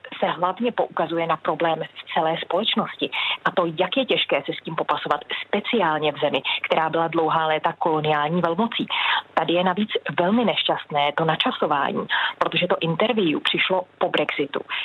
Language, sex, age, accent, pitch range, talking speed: Czech, female, 30-49, native, 160-195 Hz, 160 wpm